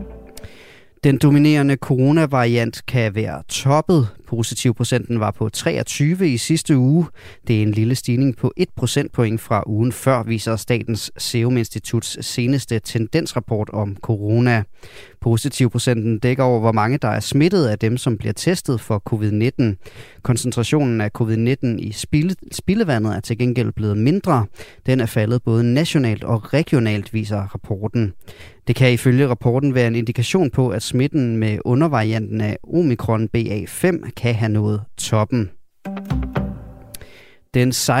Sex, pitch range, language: male, 110-135 Hz, Danish